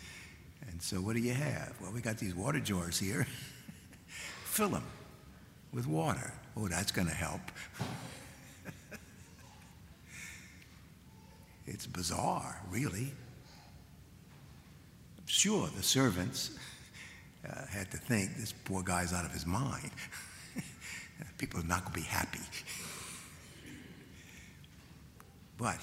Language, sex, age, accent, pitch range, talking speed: English, male, 60-79, American, 90-130 Hz, 105 wpm